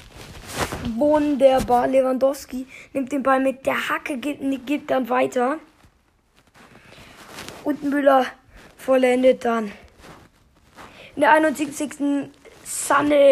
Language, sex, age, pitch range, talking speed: German, female, 20-39, 255-290 Hz, 100 wpm